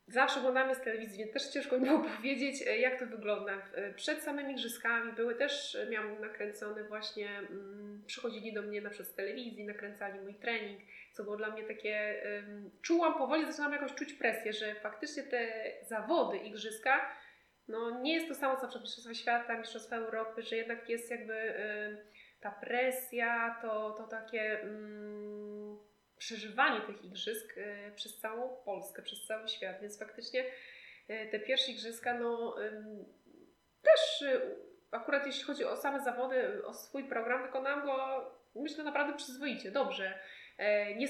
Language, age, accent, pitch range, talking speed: Polish, 20-39, native, 215-265 Hz, 150 wpm